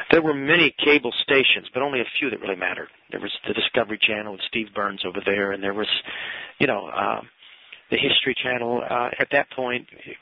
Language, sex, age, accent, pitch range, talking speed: English, male, 40-59, American, 110-135 Hz, 210 wpm